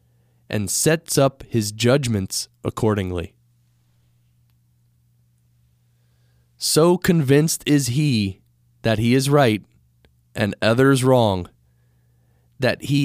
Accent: American